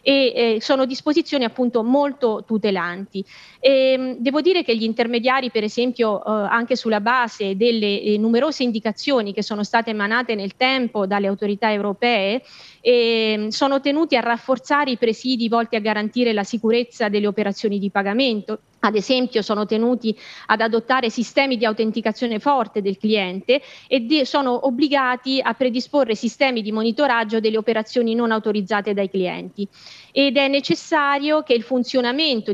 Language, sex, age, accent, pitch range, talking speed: Italian, female, 30-49, native, 210-255 Hz, 145 wpm